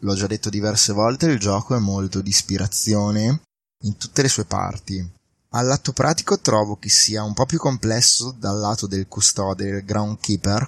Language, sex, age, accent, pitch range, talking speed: Italian, male, 20-39, native, 100-115 Hz, 175 wpm